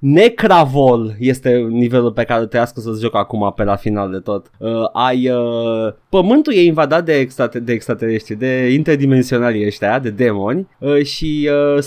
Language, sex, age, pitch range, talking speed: Romanian, male, 20-39, 120-165 Hz, 155 wpm